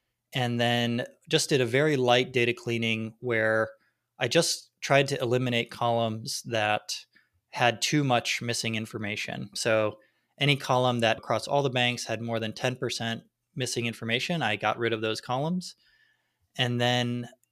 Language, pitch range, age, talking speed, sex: English, 115-125 Hz, 20-39, 150 wpm, male